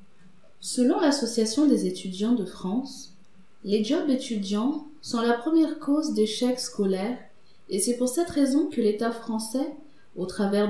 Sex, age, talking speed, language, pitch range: female, 30-49, 140 wpm, French, 195-255 Hz